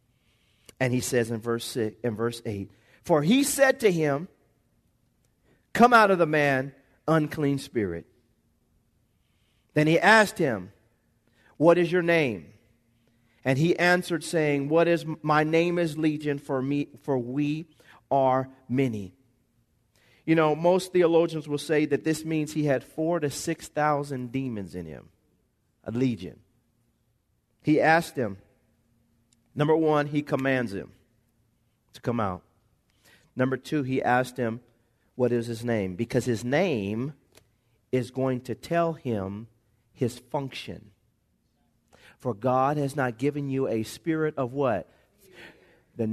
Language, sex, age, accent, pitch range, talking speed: English, male, 40-59, American, 115-155 Hz, 135 wpm